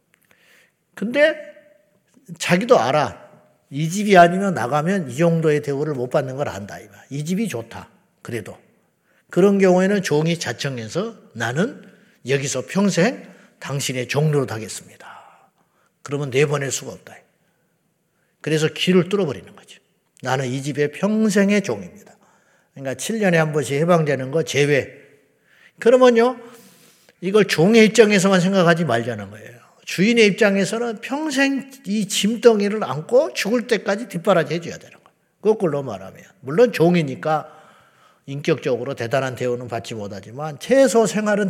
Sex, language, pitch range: male, Korean, 150-215 Hz